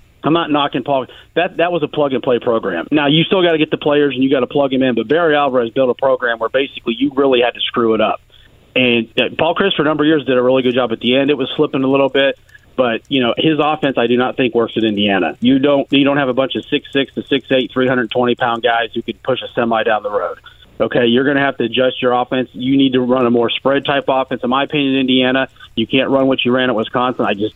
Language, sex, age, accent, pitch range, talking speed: English, male, 40-59, American, 125-140 Hz, 290 wpm